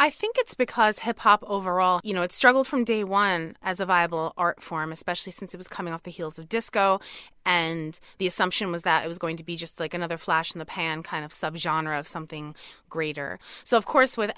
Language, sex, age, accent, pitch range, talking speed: English, female, 30-49, American, 165-195 Hz, 235 wpm